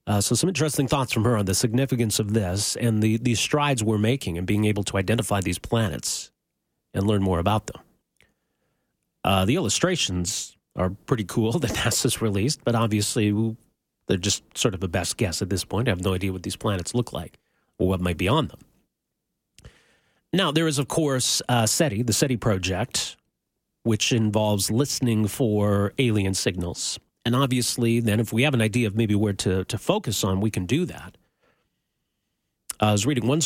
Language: English